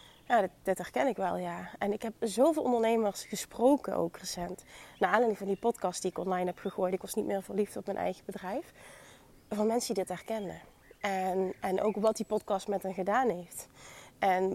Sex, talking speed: female, 200 wpm